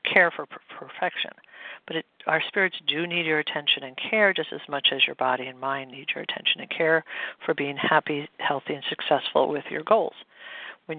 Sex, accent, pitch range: female, American, 145-175 Hz